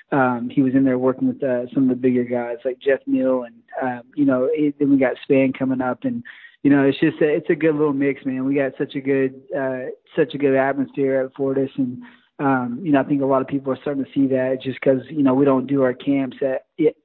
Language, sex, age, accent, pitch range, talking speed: English, male, 20-39, American, 130-140 Hz, 270 wpm